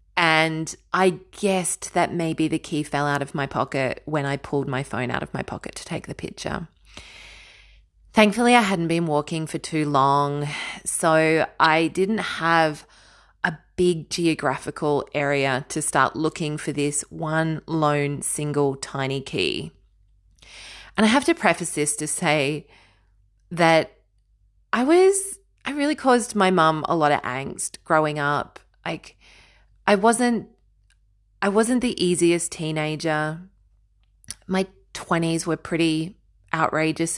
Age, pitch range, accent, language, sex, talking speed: 30-49, 140-175 Hz, Australian, English, female, 140 wpm